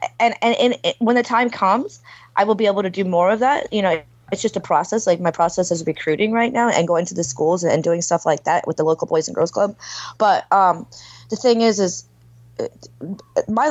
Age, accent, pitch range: 20-39, American, 185-230 Hz